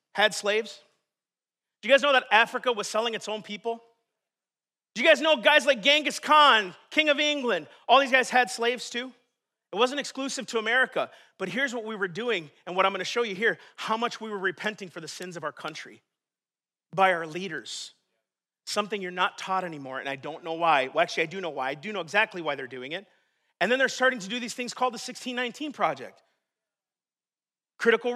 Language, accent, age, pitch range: English, American, 40-59, 210-285 Hz